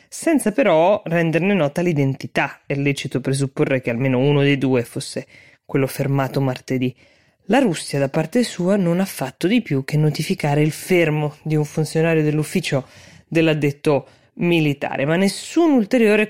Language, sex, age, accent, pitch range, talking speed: Italian, female, 20-39, native, 140-170 Hz, 145 wpm